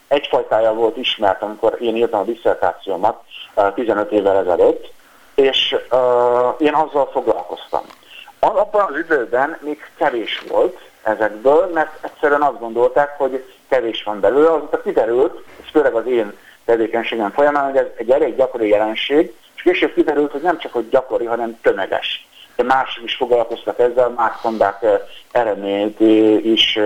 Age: 50-69